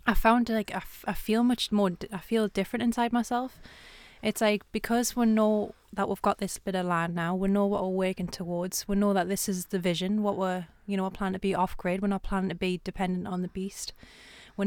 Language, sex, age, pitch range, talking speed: English, female, 20-39, 185-210 Hz, 245 wpm